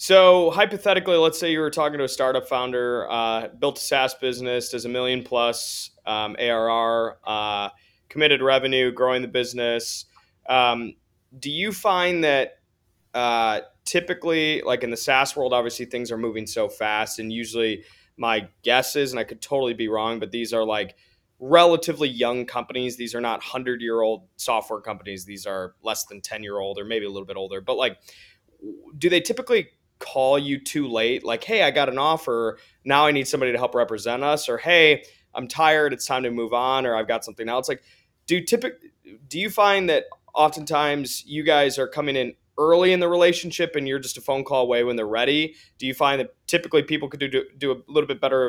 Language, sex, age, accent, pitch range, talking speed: English, male, 20-39, American, 115-150 Hz, 200 wpm